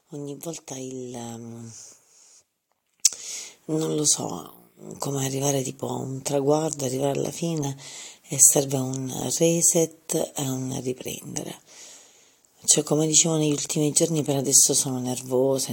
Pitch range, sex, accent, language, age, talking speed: 130-155 Hz, female, native, Italian, 40-59, 125 wpm